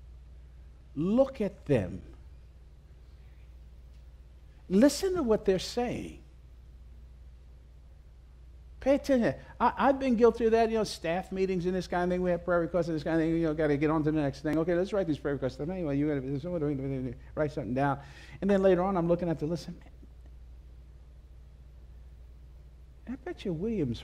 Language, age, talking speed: English, 50-69, 175 wpm